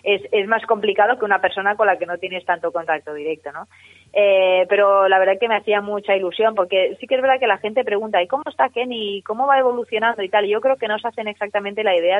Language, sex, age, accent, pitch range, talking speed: Spanish, female, 20-39, Spanish, 170-205 Hz, 260 wpm